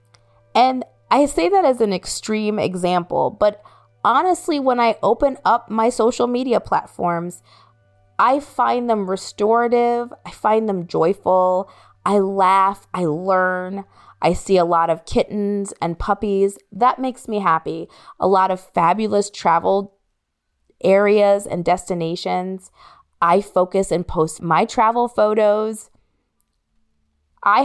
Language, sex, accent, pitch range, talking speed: English, female, American, 170-220 Hz, 125 wpm